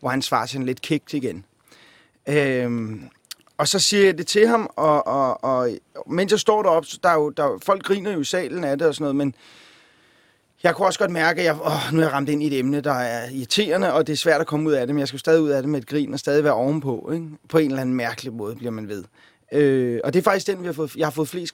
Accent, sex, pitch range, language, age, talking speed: native, male, 130-160 Hz, Danish, 30-49, 280 wpm